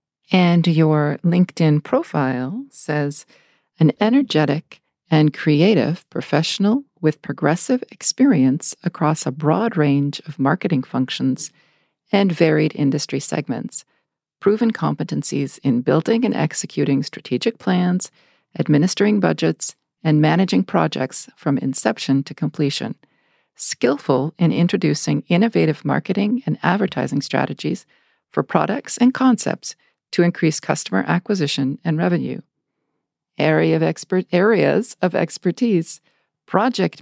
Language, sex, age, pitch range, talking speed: English, female, 50-69, 150-195 Hz, 100 wpm